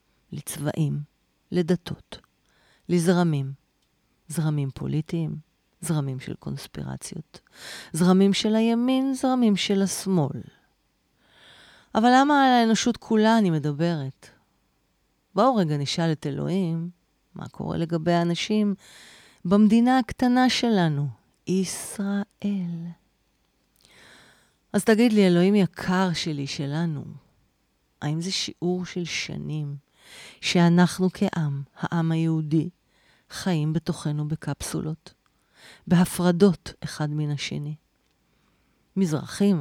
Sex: female